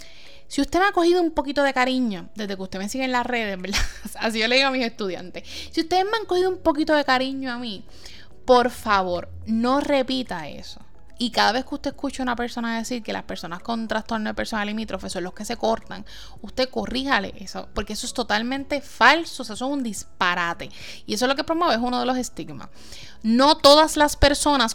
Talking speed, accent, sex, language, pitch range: 225 wpm, Venezuelan, female, English, 215-285 Hz